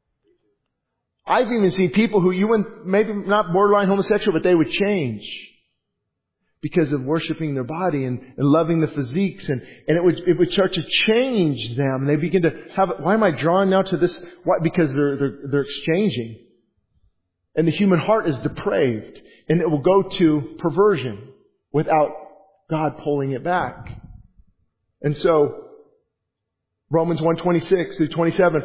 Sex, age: male, 40-59